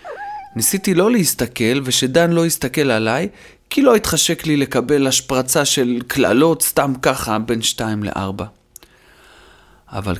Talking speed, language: 125 wpm, Hebrew